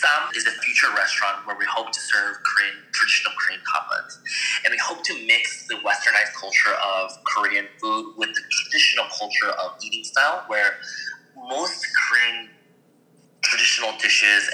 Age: 20-39